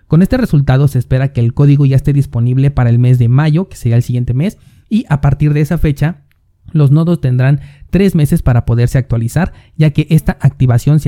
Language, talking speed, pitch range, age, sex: Spanish, 215 wpm, 125-155 Hz, 30-49, male